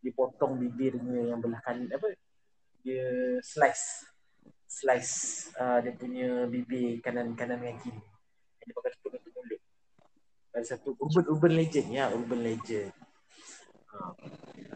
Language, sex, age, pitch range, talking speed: Malay, male, 20-39, 115-135 Hz, 100 wpm